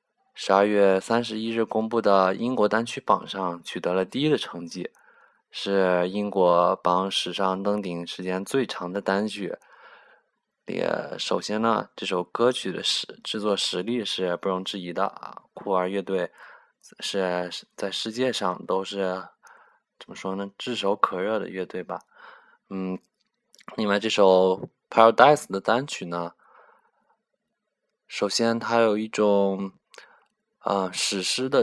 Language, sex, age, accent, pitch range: Chinese, male, 20-39, native, 90-105 Hz